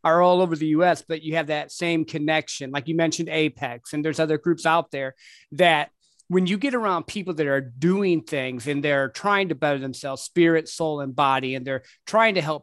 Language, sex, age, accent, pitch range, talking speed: English, male, 40-59, American, 155-195 Hz, 220 wpm